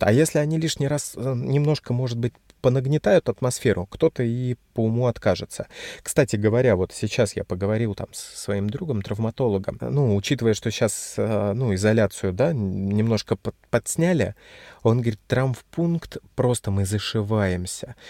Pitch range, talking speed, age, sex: 100-125 Hz, 135 wpm, 30-49, male